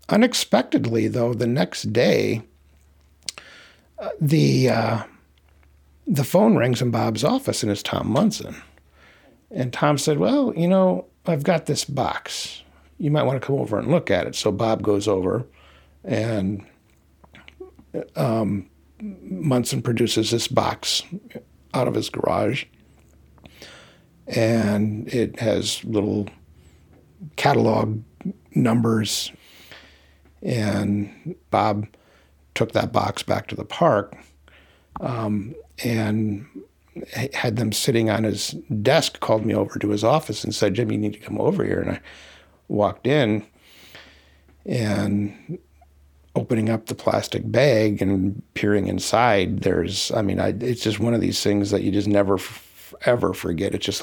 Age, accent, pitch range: 60-79, American, 80-115 Hz